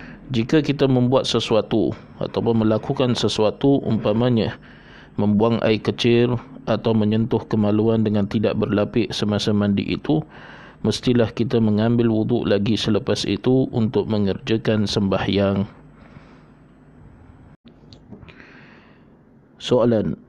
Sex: male